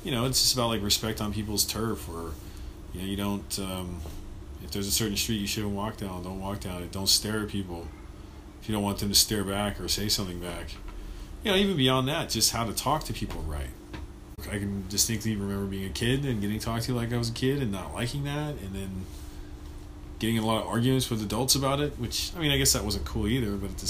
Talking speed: 255 wpm